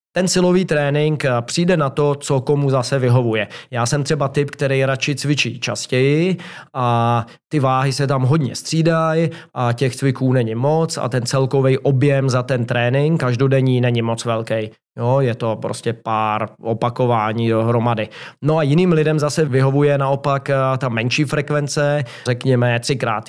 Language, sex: Czech, male